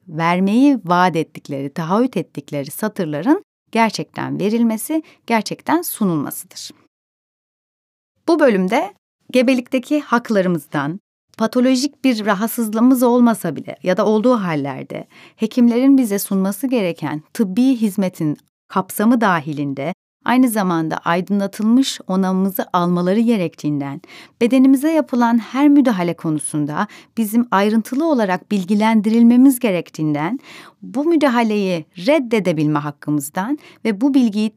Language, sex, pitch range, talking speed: Turkish, female, 175-255 Hz, 95 wpm